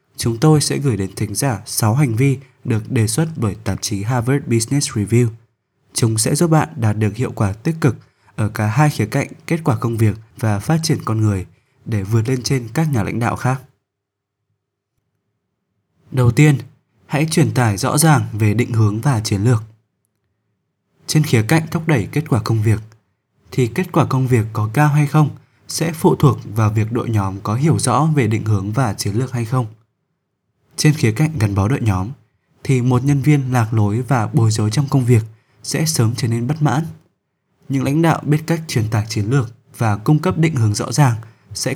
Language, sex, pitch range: Vietnamese, male, 110-140 Hz